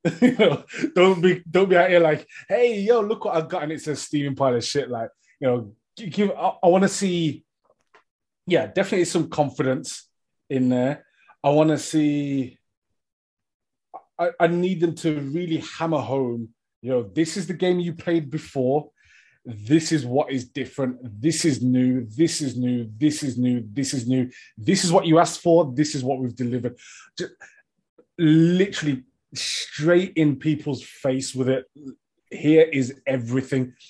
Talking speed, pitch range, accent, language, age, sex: 165 wpm, 125-160 Hz, British, English, 20-39, male